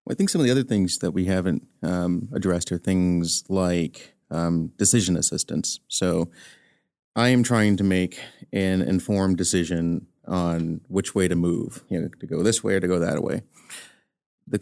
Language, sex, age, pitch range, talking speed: English, male, 30-49, 90-105 Hz, 180 wpm